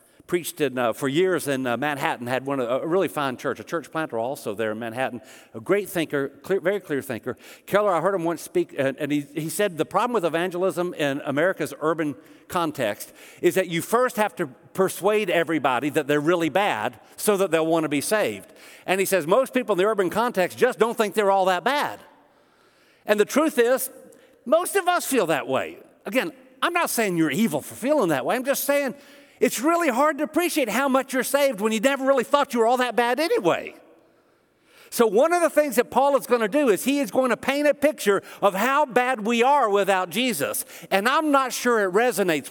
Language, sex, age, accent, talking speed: English, male, 50-69, American, 225 wpm